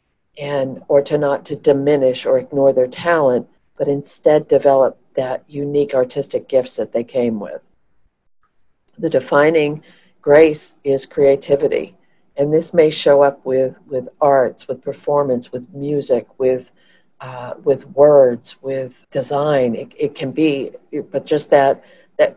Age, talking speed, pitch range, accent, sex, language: 50-69, 140 wpm, 130-150 Hz, American, female, English